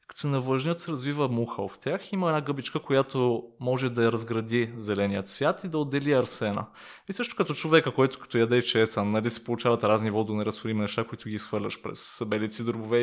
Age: 20-39